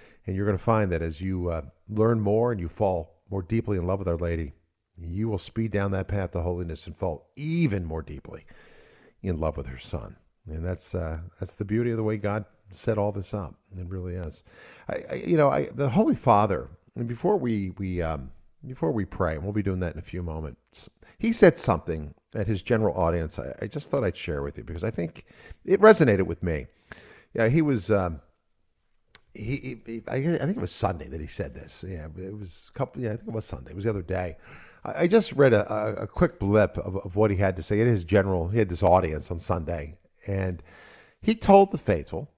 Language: English